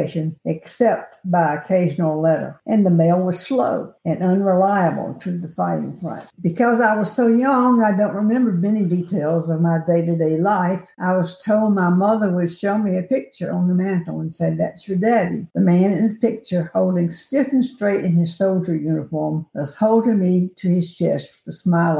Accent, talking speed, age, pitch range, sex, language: American, 190 wpm, 60-79, 170-210 Hz, female, English